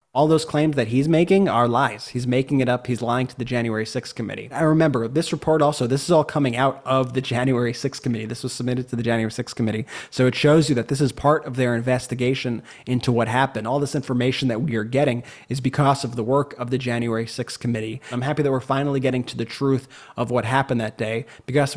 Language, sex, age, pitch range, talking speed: English, male, 30-49, 120-135 Hz, 245 wpm